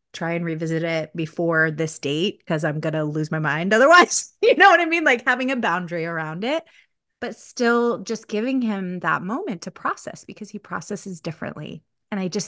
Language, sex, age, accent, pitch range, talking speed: English, female, 30-49, American, 160-205 Hz, 200 wpm